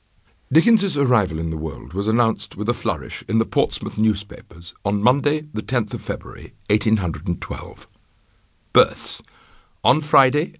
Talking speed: 135 wpm